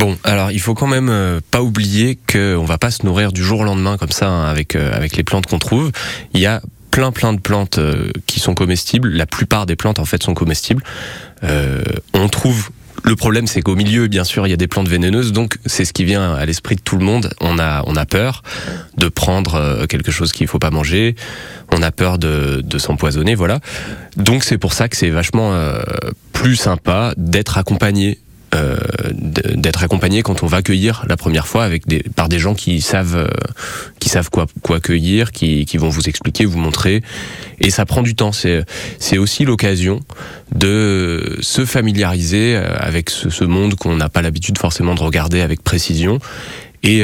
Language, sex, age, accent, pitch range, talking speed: French, male, 20-39, French, 85-110 Hz, 205 wpm